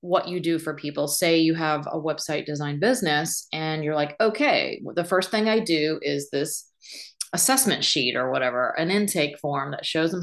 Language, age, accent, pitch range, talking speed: English, 30-49, American, 155-195 Hz, 195 wpm